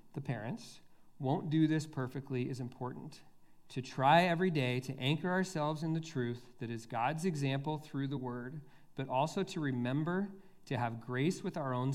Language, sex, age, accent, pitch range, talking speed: English, male, 40-59, American, 125-155 Hz, 175 wpm